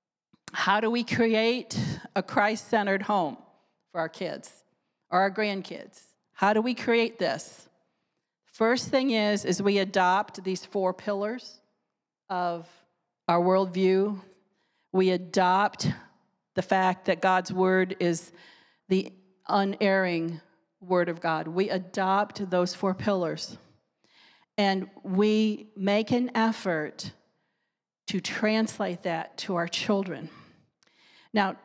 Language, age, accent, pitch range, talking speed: English, 40-59, American, 185-225 Hz, 115 wpm